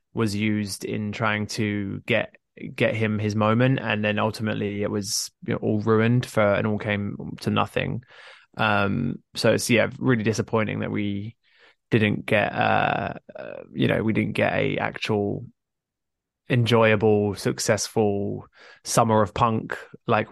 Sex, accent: male, British